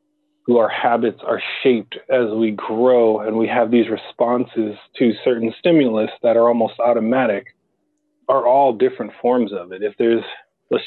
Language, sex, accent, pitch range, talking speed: English, male, American, 115-135 Hz, 160 wpm